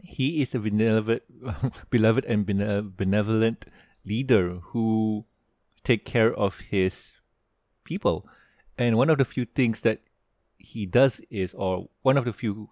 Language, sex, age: English, male, 30-49